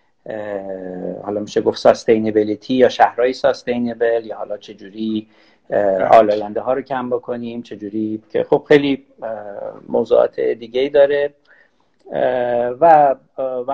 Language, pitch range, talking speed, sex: Persian, 110-160 Hz, 100 wpm, male